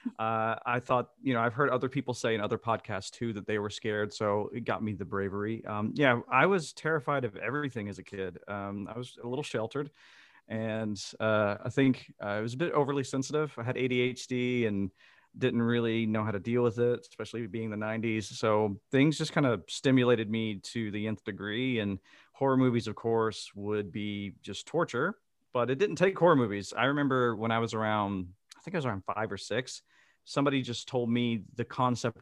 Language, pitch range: English, 110-130 Hz